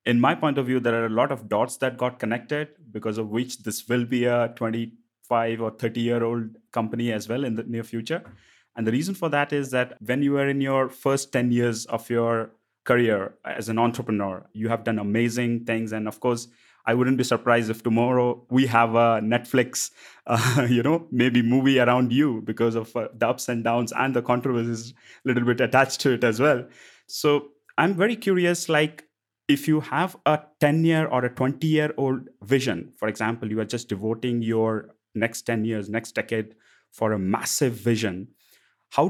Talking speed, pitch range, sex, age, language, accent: 195 wpm, 115-130 Hz, male, 30-49, English, Indian